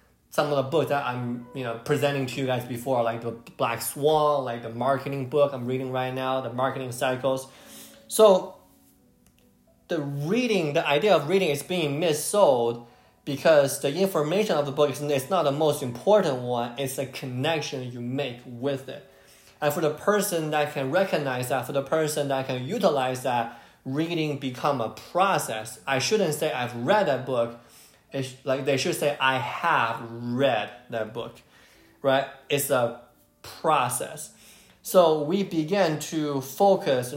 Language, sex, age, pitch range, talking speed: English, male, 20-39, 125-155 Hz, 165 wpm